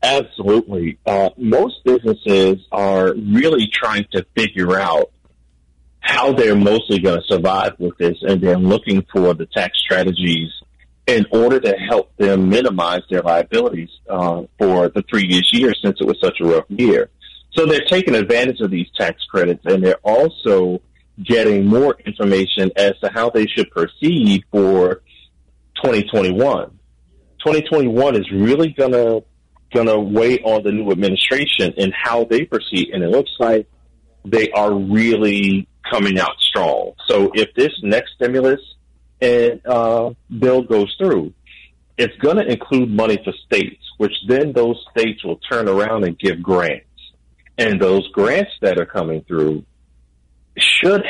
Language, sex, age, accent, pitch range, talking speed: English, male, 40-59, American, 80-115 Hz, 150 wpm